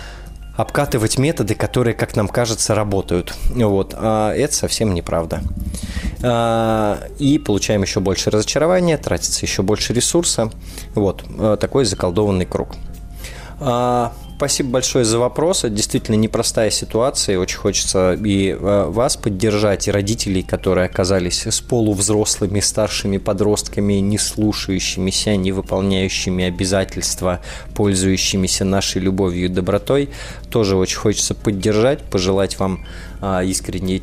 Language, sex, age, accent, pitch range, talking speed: Russian, male, 20-39, native, 90-110 Hz, 110 wpm